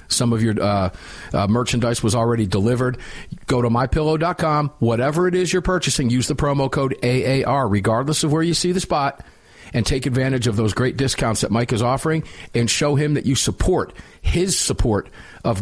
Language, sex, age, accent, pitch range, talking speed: English, male, 50-69, American, 110-135 Hz, 190 wpm